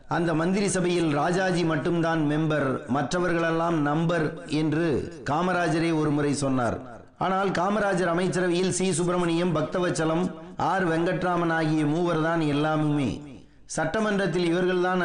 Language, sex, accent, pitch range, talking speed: Tamil, male, native, 150-180 Hz, 105 wpm